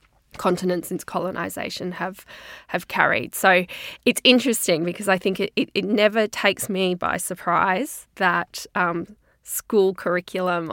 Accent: Australian